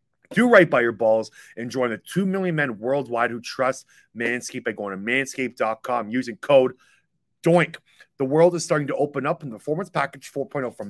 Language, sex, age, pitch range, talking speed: English, male, 30-49, 125-165 Hz, 195 wpm